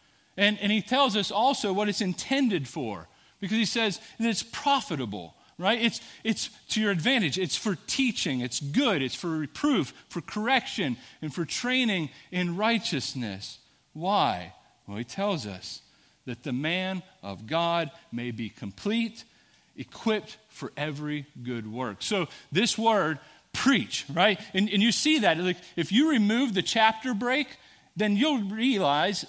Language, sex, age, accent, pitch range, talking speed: English, male, 40-59, American, 150-220 Hz, 155 wpm